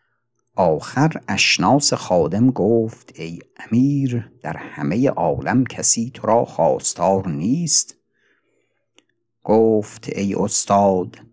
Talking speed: 90 wpm